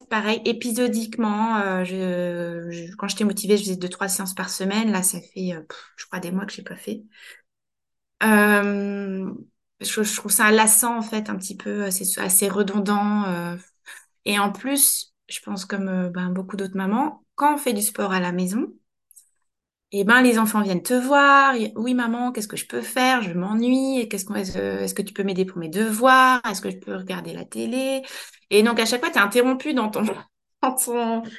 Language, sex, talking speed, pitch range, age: French, female, 205 wpm, 195-240 Hz, 20-39